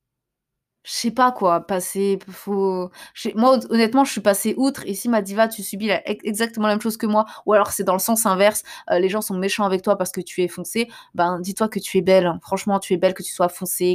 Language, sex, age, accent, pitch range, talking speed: French, female, 20-39, French, 180-220 Hz, 255 wpm